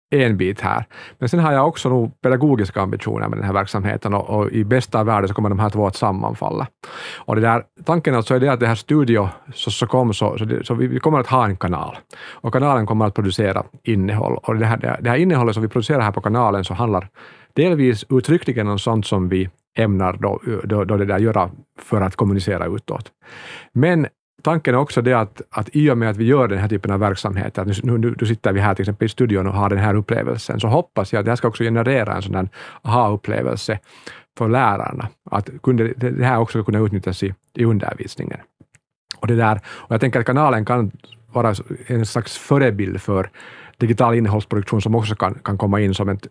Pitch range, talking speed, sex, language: 105-125 Hz, 220 wpm, male, Swedish